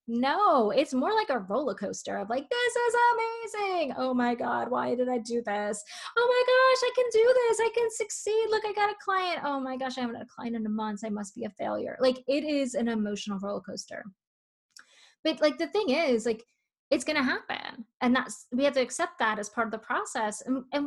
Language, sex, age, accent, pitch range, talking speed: English, female, 20-39, American, 215-310 Hz, 235 wpm